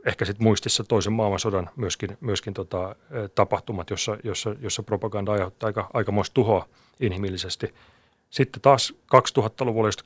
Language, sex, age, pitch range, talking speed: Finnish, male, 30-49, 100-115 Hz, 130 wpm